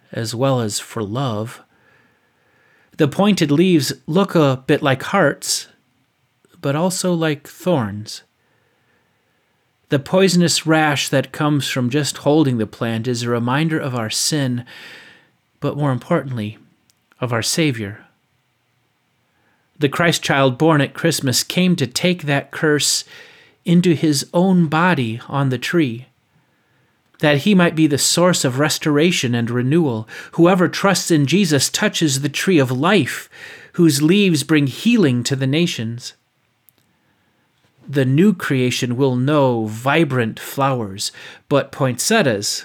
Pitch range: 125-165 Hz